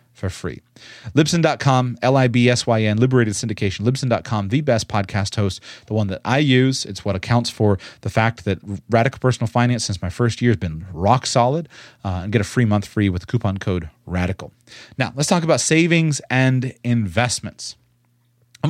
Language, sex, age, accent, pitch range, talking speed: English, male, 30-49, American, 105-130 Hz, 170 wpm